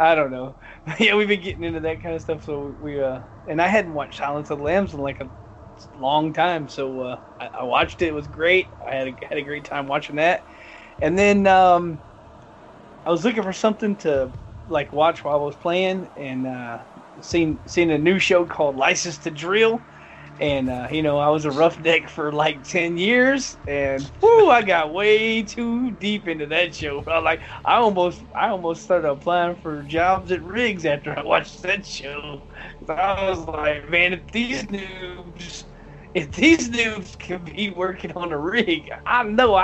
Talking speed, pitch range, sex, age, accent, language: 195 wpm, 145-195 Hz, male, 20-39, American, English